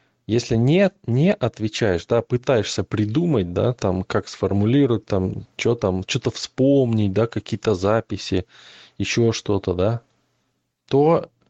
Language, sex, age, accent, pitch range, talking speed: Russian, male, 20-39, native, 95-120 Hz, 120 wpm